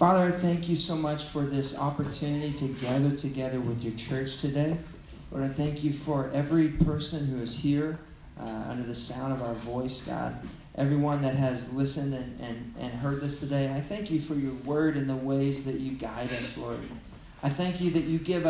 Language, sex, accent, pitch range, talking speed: English, male, American, 140-175 Hz, 205 wpm